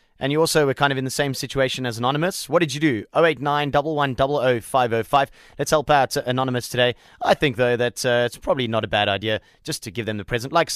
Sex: male